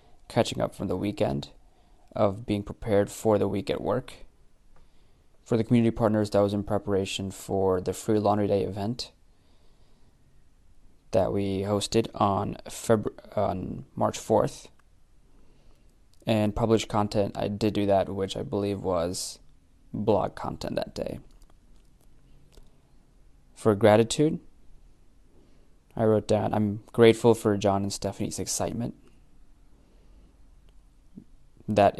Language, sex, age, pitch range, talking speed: English, male, 20-39, 95-110 Hz, 120 wpm